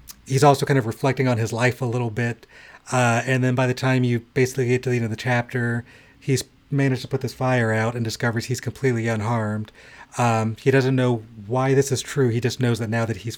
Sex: male